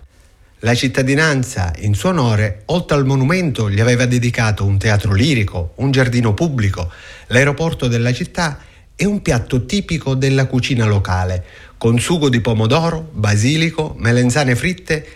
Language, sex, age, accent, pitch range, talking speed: Italian, male, 30-49, native, 105-140 Hz, 135 wpm